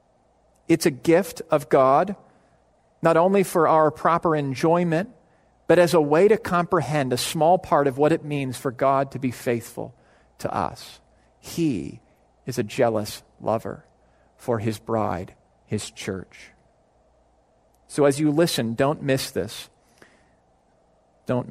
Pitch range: 125-160 Hz